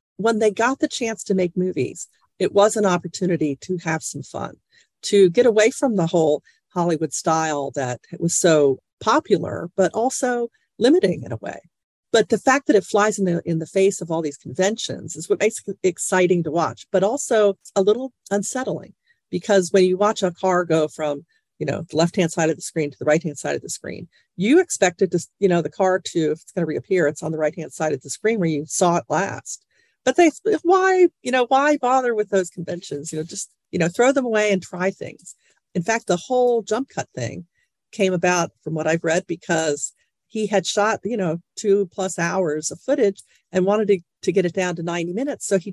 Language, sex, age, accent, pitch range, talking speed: English, female, 40-59, American, 165-215 Hz, 225 wpm